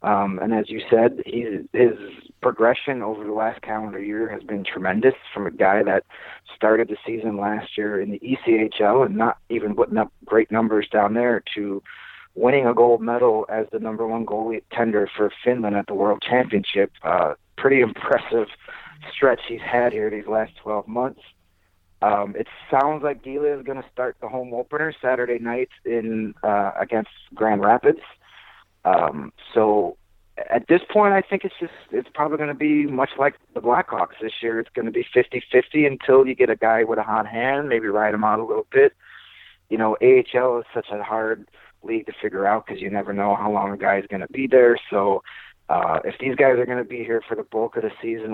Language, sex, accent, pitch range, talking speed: English, male, American, 105-130 Hz, 200 wpm